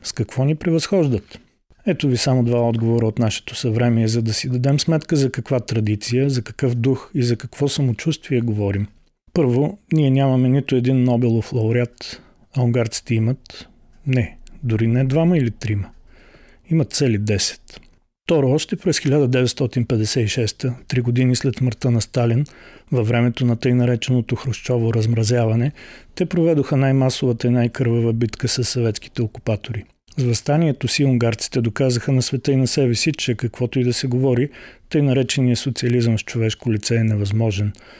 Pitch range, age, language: 115-135 Hz, 40-59, Bulgarian